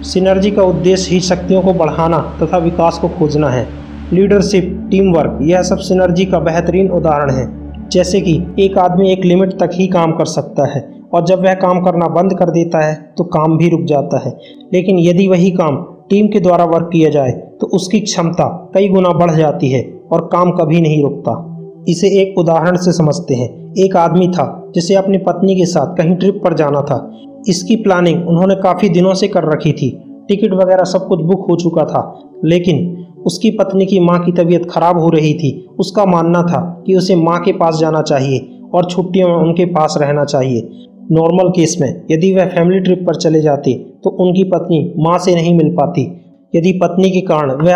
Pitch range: 160-190 Hz